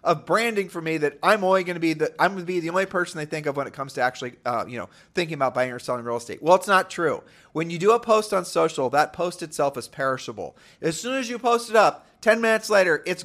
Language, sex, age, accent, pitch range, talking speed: English, male, 30-49, American, 135-180 Hz, 285 wpm